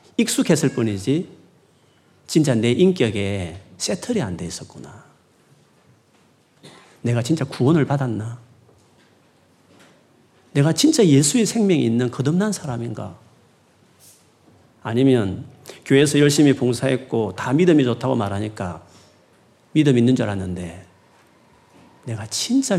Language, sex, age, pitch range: Korean, male, 40-59, 115-180 Hz